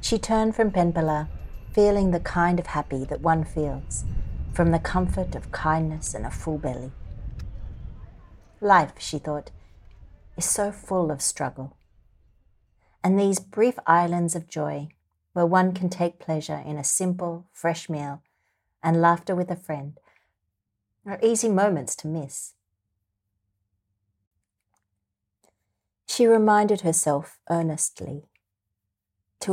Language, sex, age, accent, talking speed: English, female, 40-59, Australian, 120 wpm